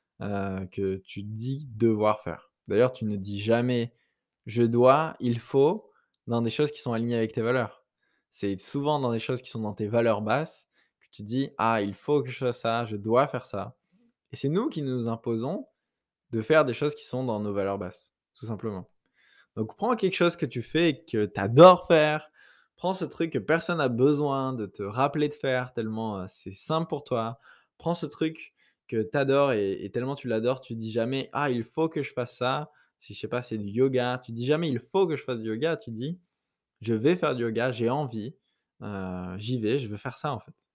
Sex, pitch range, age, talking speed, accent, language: male, 110-150 Hz, 20-39, 235 wpm, French, French